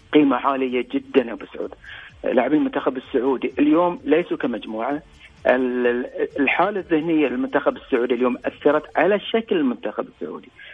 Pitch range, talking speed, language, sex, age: 135-200 Hz, 110 wpm, English, male, 50-69